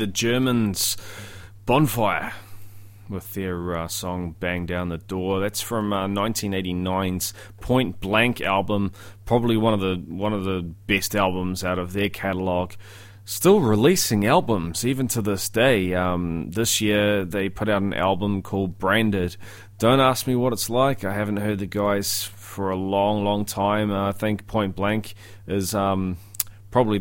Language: English